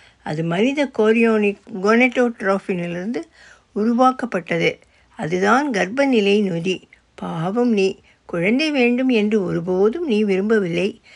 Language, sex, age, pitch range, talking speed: Tamil, female, 60-79, 180-245 Hz, 85 wpm